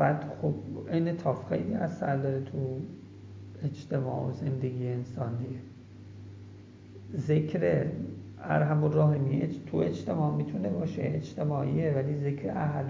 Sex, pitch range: male, 125-150 Hz